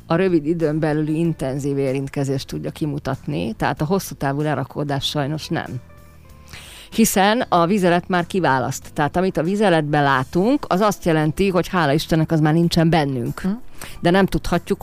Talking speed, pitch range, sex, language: 155 wpm, 145-180 Hz, female, Hungarian